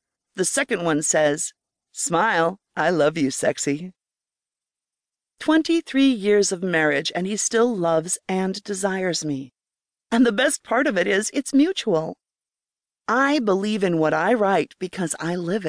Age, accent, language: 40-59, American, English